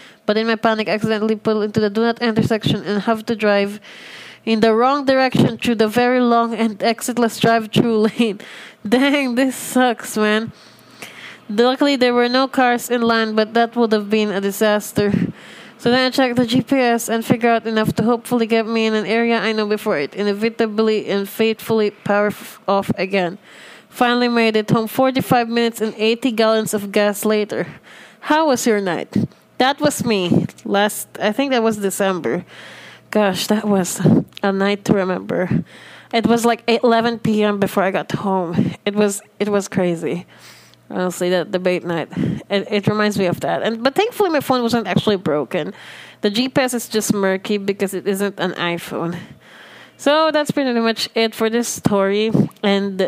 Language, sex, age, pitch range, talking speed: English, female, 20-39, 200-235 Hz, 180 wpm